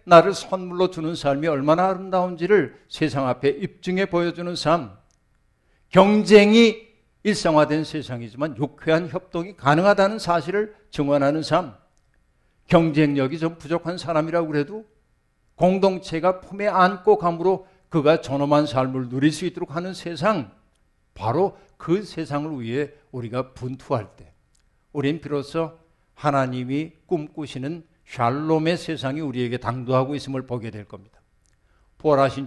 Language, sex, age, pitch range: Korean, male, 60-79, 130-175 Hz